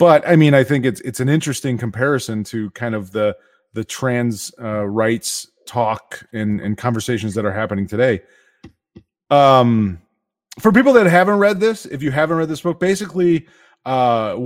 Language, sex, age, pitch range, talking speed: English, male, 30-49, 115-155 Hz, 170 wpm